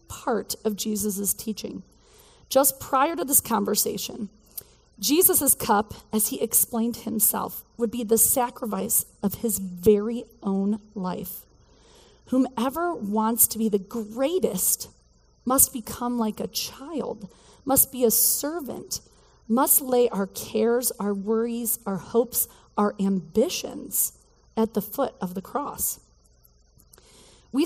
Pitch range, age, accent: 200-255 Hz, 30-49, American